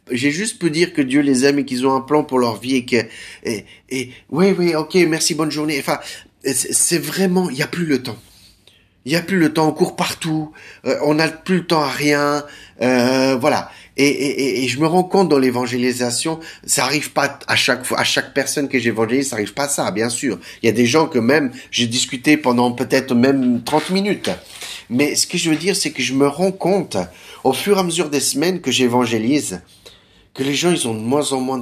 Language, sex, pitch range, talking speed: French, male, 115-155 Hz, 240 wpm